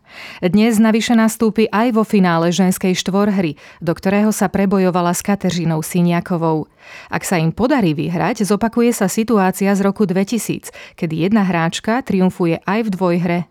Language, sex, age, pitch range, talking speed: Slovak, female, 30-49, 175-205 Hz, 145 wpm